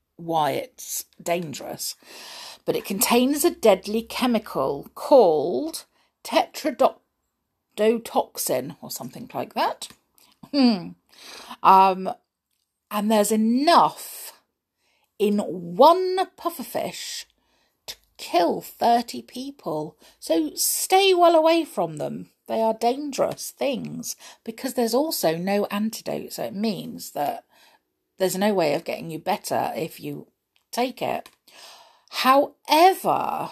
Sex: female